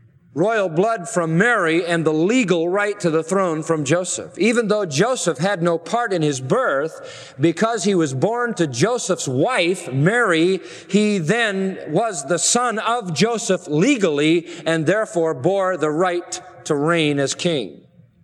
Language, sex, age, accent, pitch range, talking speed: English, male, 40-59, American, 145-185 Hz, 155 wpm